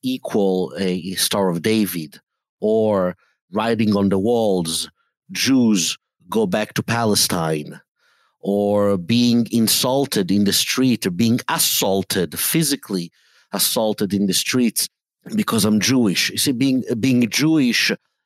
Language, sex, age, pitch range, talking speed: English, male, 50-69, 100-145 Hz, 120 wpm